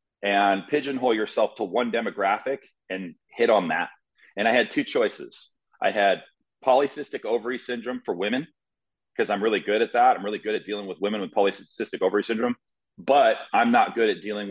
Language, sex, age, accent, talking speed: English, male, 30-49, American, 185 wpm